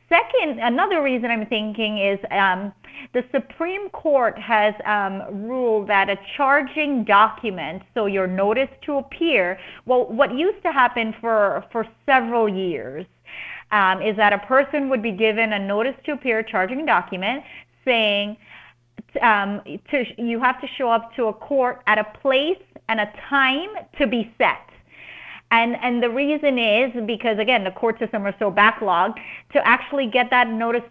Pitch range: 215-265 Hz